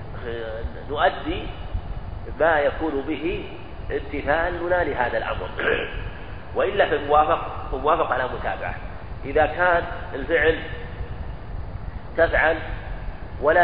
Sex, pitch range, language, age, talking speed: male, 105-150 Hz, Arabic, 40-59, 85 wpm